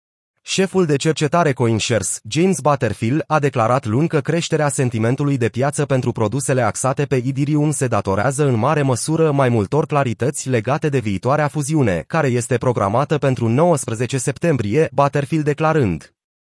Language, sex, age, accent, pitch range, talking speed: Romanian, male, 30-49, native, 120-150 Hz, 140 wpm